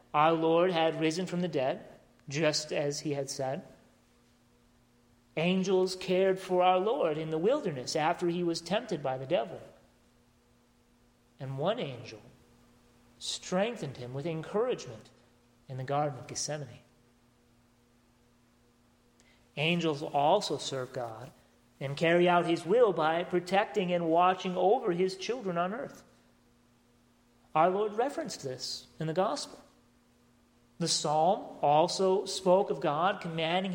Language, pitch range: English, 125-185 Hz